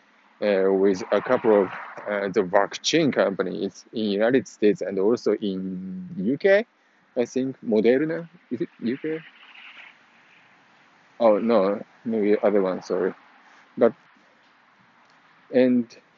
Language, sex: English, male